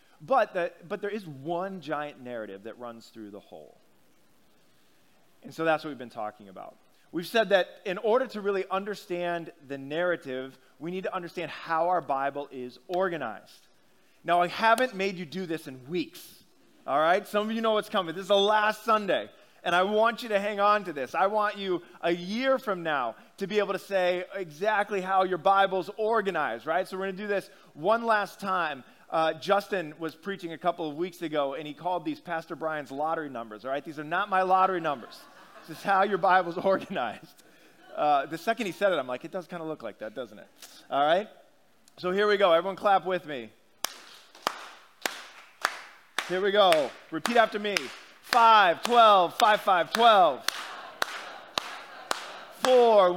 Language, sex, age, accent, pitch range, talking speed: English, male, 20-39, American, 160-205 Hz, 190 wpm